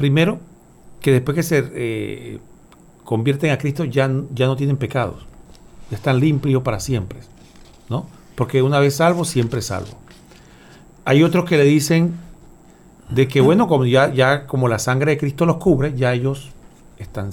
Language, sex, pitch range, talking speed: Spanish, male, 125-160 Hz, 165 wpm